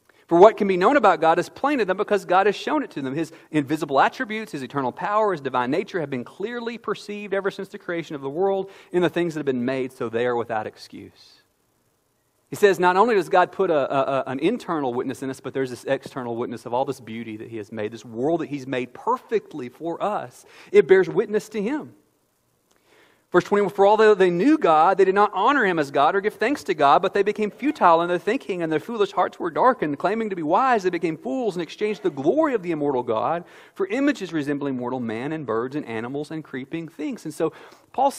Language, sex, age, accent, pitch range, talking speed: English, male, 40-59, American, 135-200 Hz, 235 wpm